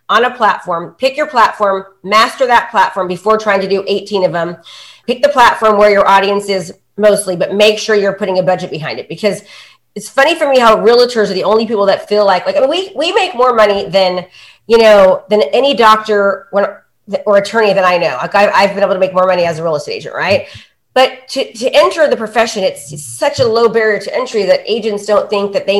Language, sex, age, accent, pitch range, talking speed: English, female, 30-49, American, 200-260 Hz, 235 wpm